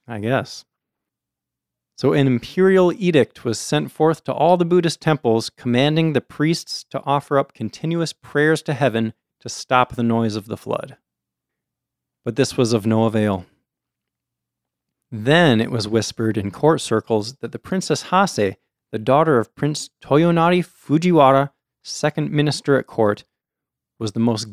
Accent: American